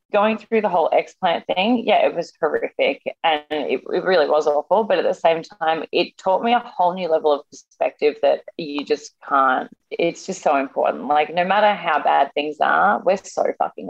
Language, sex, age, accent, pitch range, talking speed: English, female, 20-39, Australian, 145-195 Hz, 205 wpm